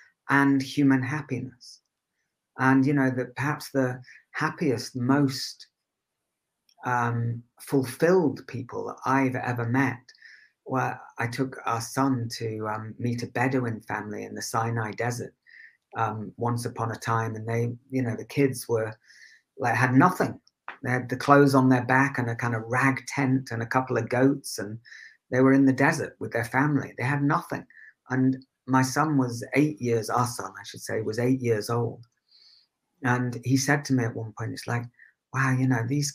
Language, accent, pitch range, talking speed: English, British, 120-140 Hz, 175 wpm